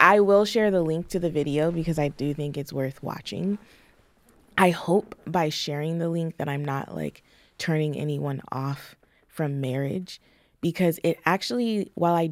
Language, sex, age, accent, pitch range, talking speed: English, female, 20-39, American, 150-190 Hz, 170 wpm